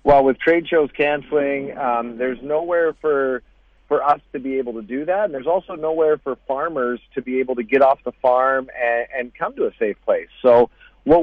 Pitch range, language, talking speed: 115-145 Hz, English, 215 wpm